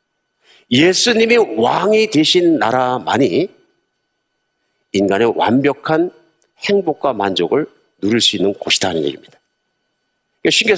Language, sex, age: Korean, male, 50-69